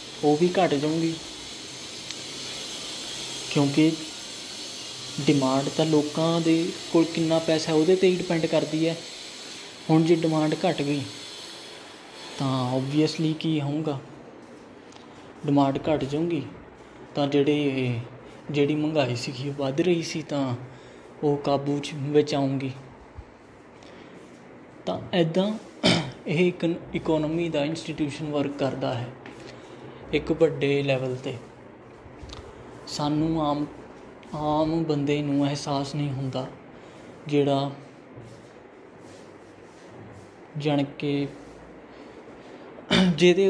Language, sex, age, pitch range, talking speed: Punjabi, male, 20-39, 140-165 Hz, 85 wpm